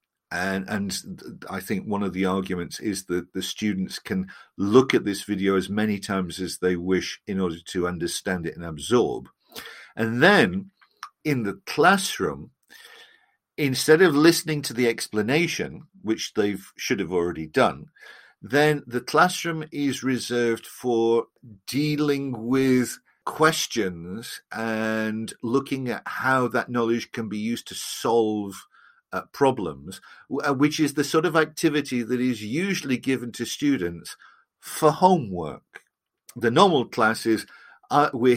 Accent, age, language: British, 50-69, English